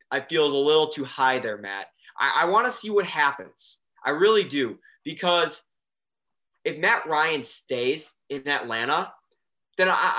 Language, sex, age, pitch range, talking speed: English, male, 20-39, 135-190 Hz, 160 wpm